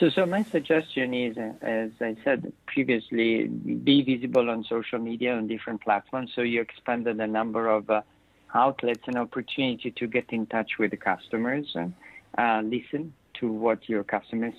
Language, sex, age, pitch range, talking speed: English, male, 50-69, 115-130 Hz, 165 wpm